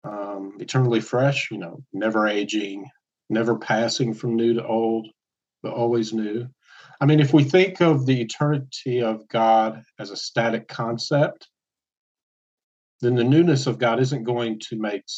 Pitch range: 110-130 Hz